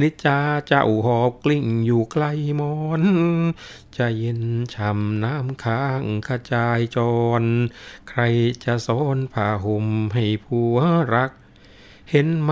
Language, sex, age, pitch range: Thai, male, 60-79, 115-145 Hz